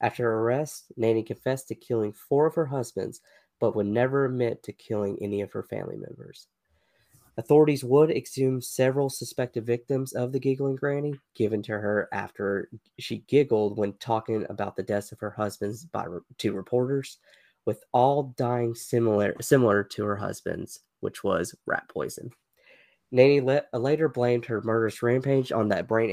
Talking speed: 165 wpm